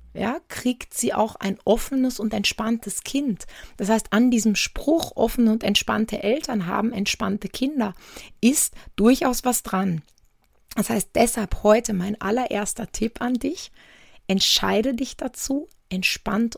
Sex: female